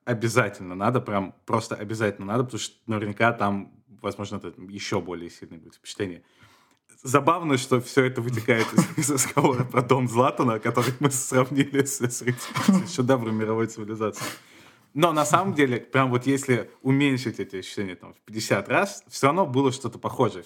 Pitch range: 105-130 Hz